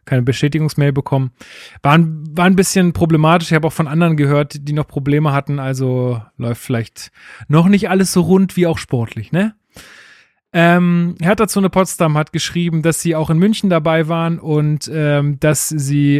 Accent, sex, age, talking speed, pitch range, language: German, male, 30-49, 180 wpm, 140-175 Hz, German